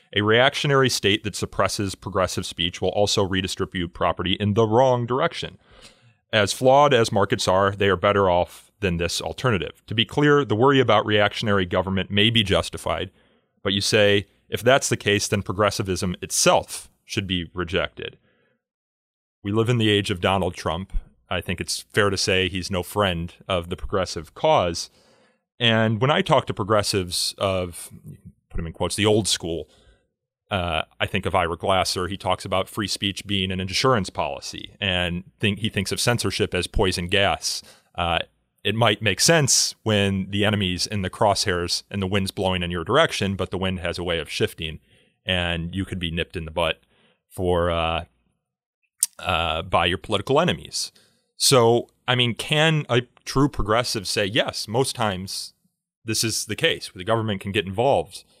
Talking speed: 175 wpm